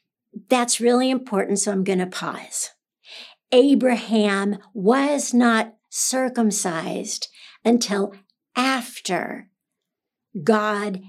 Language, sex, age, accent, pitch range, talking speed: English, female, 60-79, American, 195-240 Hz, 80 wpm